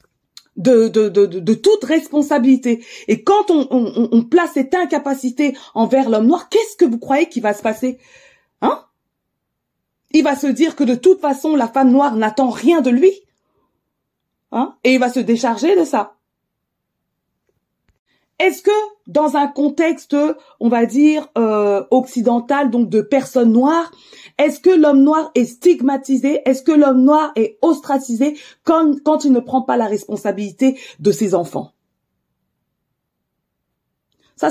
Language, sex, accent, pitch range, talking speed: French, female, French, 230-295 Hz, 150 wpm